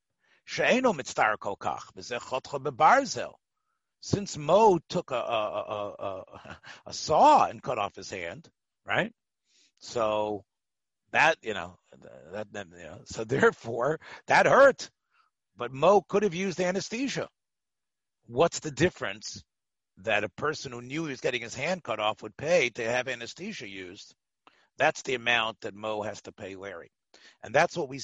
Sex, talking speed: male, 135 wpm